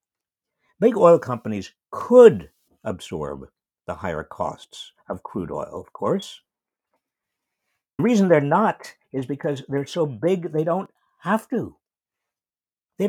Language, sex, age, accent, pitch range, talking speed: English, male, 60-79, American, 105-170 Hz, 125 wpm